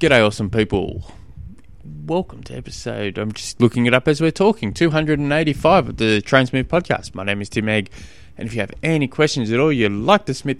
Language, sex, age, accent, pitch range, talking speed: English, male, 20-39, Australian, 110-165 Hz, 205 wpm